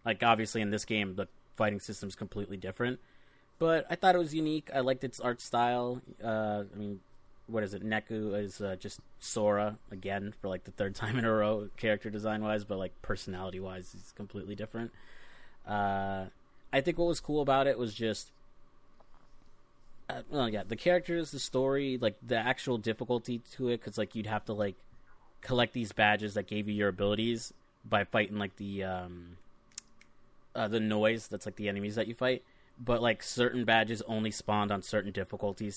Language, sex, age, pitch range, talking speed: English, male, 20-39, 105-120 Hz, 185 wpm